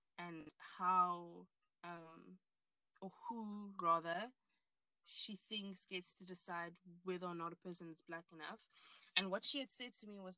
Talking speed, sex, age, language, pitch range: 155 wpm, female, 20-39, English, 170-195 Hz